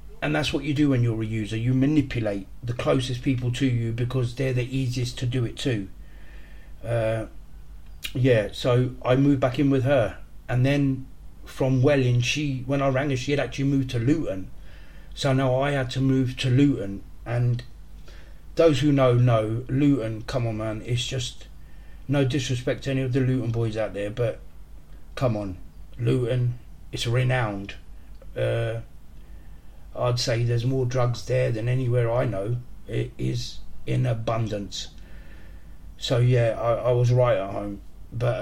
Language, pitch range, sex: English, 100-135 Hz, male